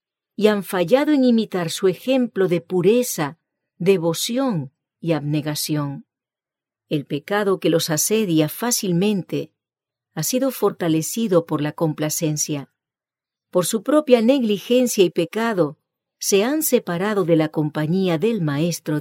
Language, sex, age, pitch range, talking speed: English, female, 50-69, 155-225 Hz, 120 wpm